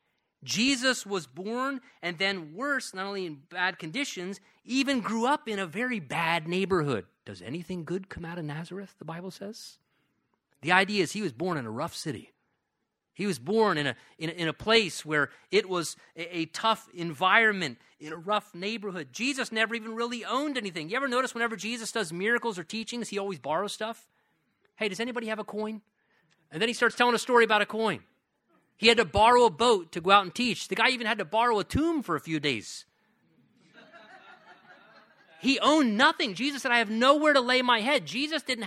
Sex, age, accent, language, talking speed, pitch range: male, 30-49, American, English, 205 wpm, 180-245 Hz